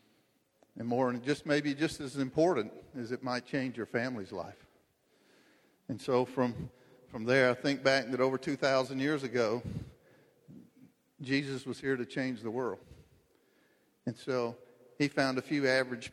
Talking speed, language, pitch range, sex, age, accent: 160 wpm, English, 115-130 Hz, male, 50-69, American